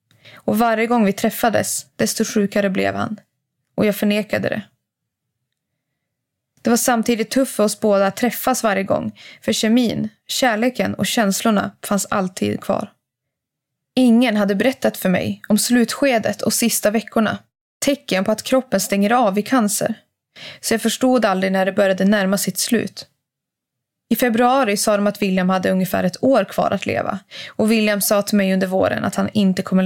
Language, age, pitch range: English, 20-39, 195-230 Hz